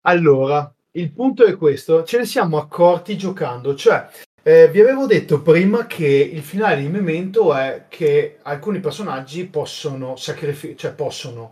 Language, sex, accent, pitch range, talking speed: Italian, male, native, 145-190 Hz, 150 wpm